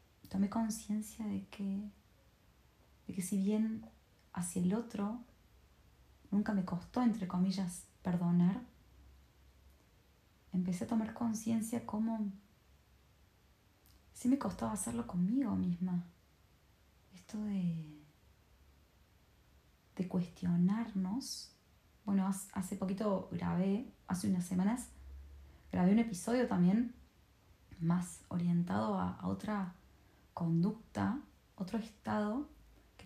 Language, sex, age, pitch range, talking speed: Spanish, female, 20-39, 170-205 Hz, 95 wpm